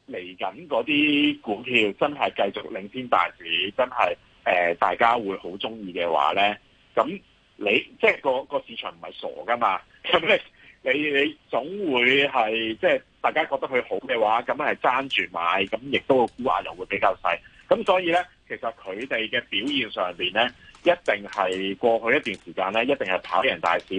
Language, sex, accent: Chinese, male, native